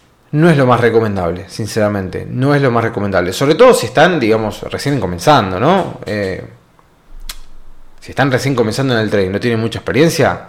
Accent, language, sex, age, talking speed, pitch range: Argentinian, Spanish, male, 20-39, 175 wpm, 105-140 Hz